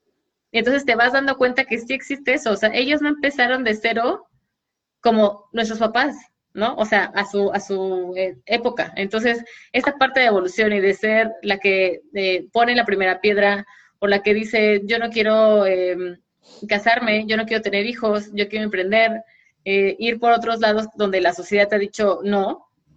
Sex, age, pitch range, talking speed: female, 20-39, 205-245 Hz, 190 wpm